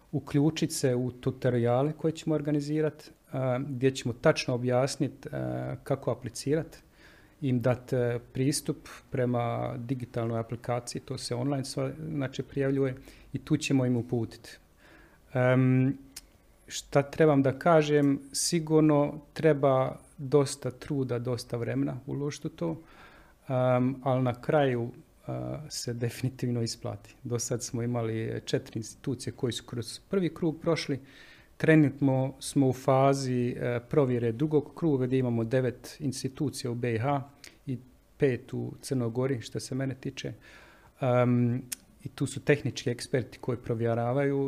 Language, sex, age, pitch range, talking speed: Croatian, male, 40-59, 120-145 Hz, 120 wpm